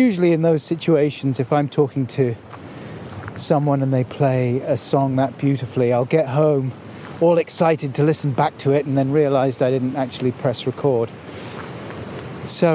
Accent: British